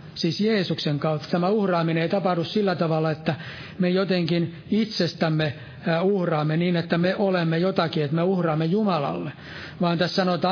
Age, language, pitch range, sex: 60-79, Finnish, 160-190 Hz, male